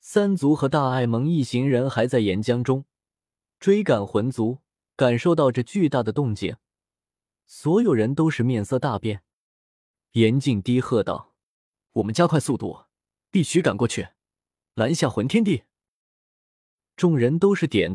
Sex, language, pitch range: male, Chinese, 110-155 Hz